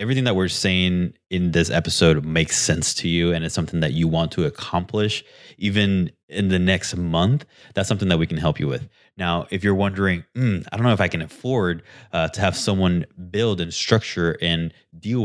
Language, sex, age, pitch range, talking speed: English, male, 20-39, 85-100 Hz, 210 wpm